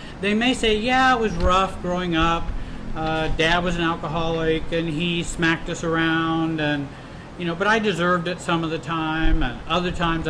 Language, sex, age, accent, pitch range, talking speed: English, male, 40-59, American, 140-175 Hz, 190 wpm